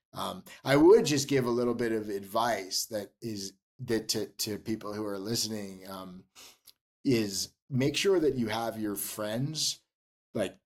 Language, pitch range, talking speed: English, 105-125 Hz, 165 wpm